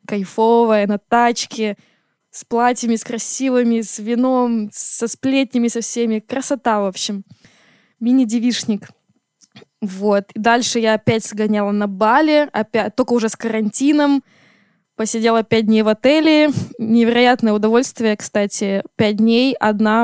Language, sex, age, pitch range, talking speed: Russian, female, 20-39, 210-245 Hz, 125 wpm